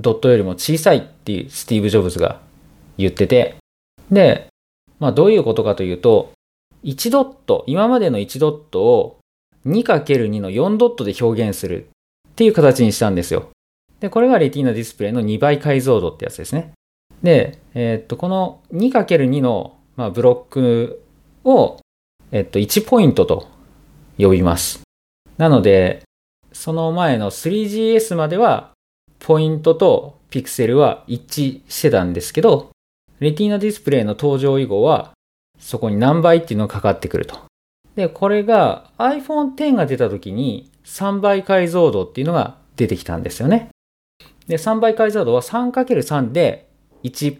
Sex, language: male, Japanese